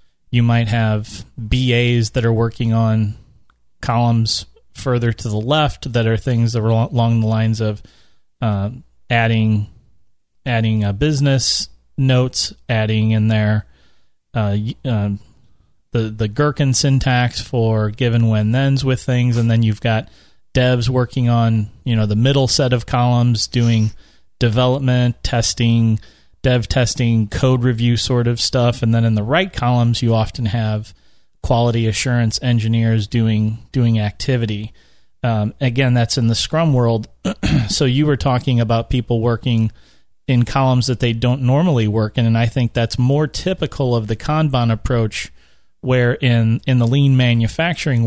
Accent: American